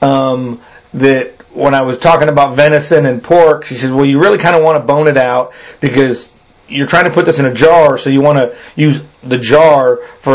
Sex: male